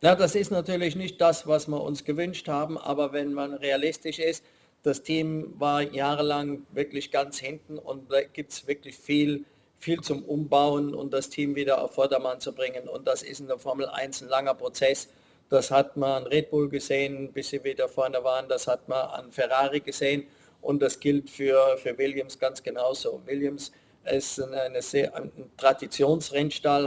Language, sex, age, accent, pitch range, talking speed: German, male, 50-69, German, 135-150 Hz, 185 wpm